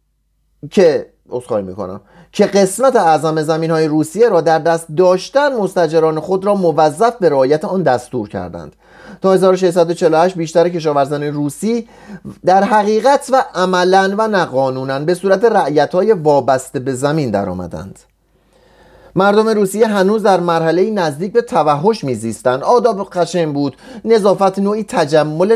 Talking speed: 130 wpm